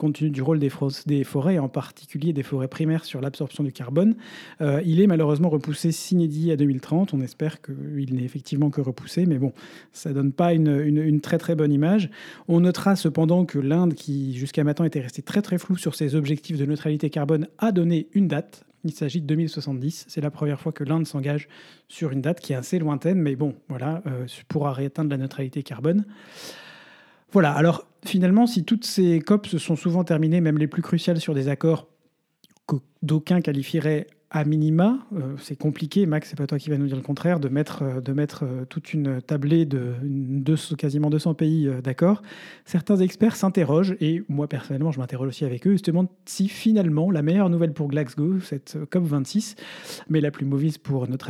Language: French